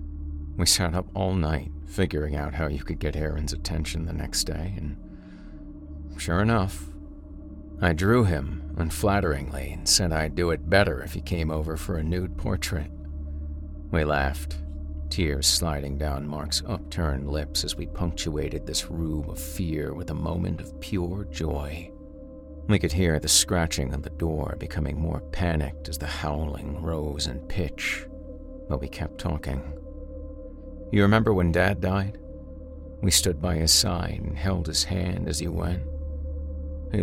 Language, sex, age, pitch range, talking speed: English, male, 50-69, 75-85 Hz, 155 wpm